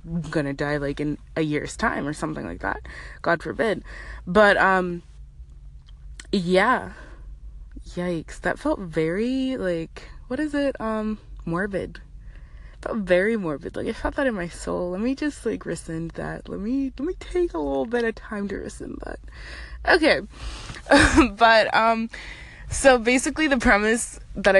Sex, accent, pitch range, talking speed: female, American, 170-230 Hz, 155 wpm